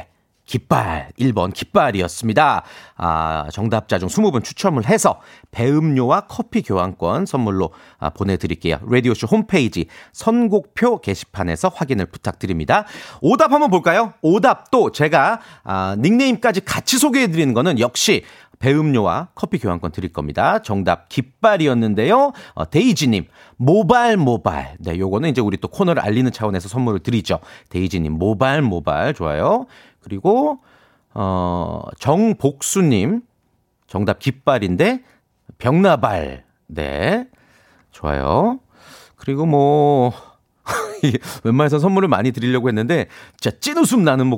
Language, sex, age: Korean, male, 40-59